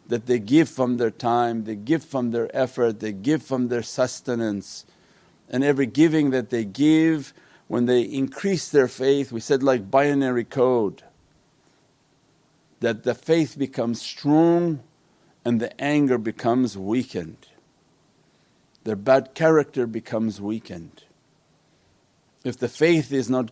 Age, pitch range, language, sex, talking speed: 50-69, 120-145 Hz, English, male, 135 wpm